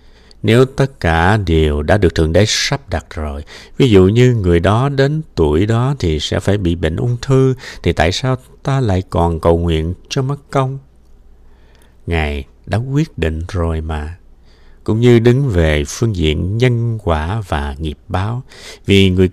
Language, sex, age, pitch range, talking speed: Vietnamese, male, 60-79, 80-120 Hz, 175 wpm